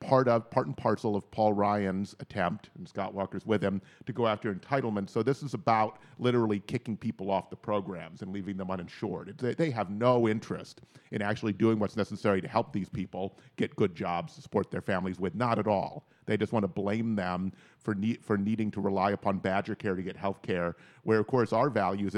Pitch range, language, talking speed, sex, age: 95-115 Hz, English, 215 wpm, male, 40-59